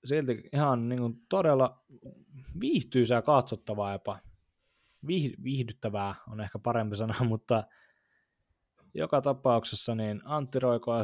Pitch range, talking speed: 110-125 Hz, 105 wpm